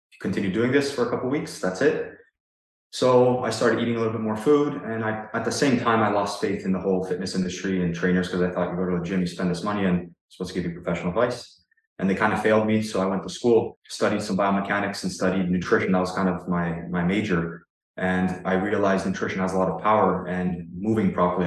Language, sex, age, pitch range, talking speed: English, male, 20-39, 90-100 Hz, 255 wpm